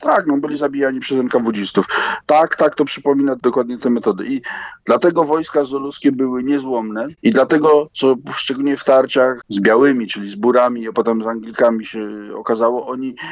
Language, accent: Polish, native